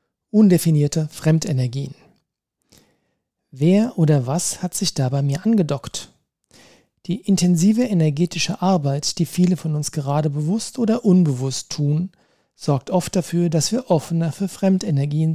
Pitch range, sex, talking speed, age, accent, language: 145-185 Hz, male, 120 wpm, 40-59, German, German